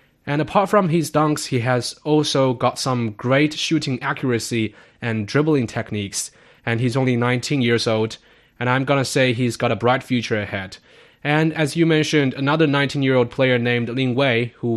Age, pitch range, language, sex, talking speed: 20-39, 115-140 Hz, English, male, 185 wpm